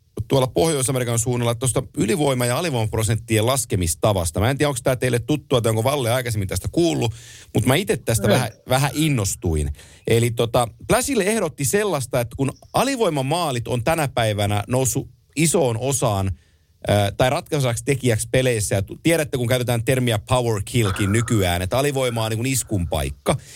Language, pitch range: Finnish, 115-160 Hz